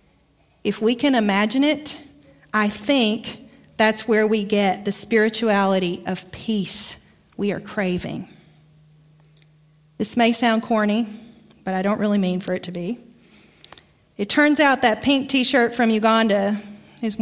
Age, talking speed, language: 40-59, 140 wpm, English